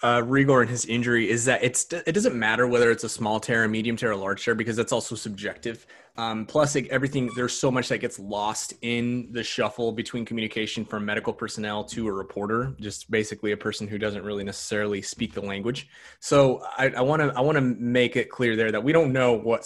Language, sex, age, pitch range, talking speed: English, male, 20-39, 105-125 Hz, 225 wpm